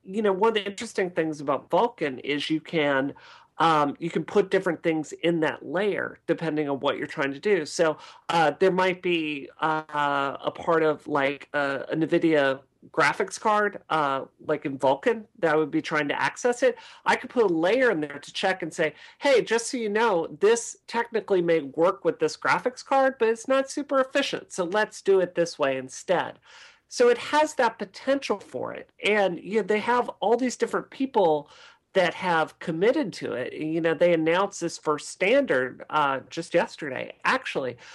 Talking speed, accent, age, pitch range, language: 195 wpm, American, 40-59, 155-225 Hz, English